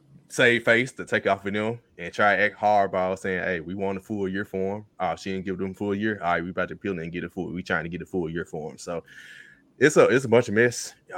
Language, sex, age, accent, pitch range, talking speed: English, male, 20-39, American, 90-115 Hz, 310 wpm